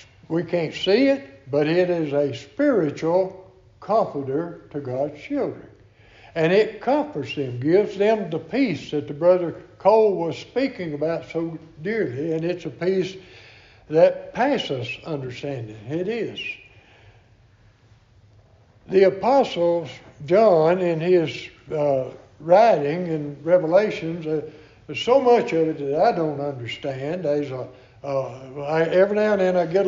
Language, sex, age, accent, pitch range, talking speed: English, male, 60-79, American, 130-180 Hz, 135 wpm